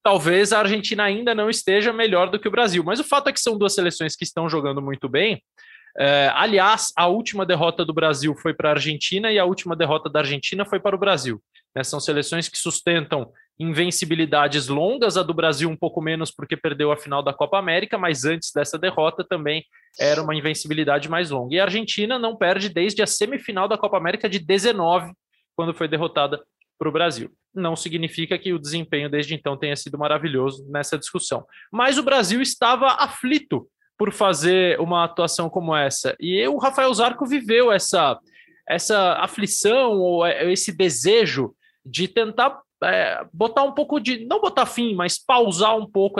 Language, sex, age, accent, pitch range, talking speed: Portuguese, male, 20-39, Brazilian, 155-200 Hz, 180 wpm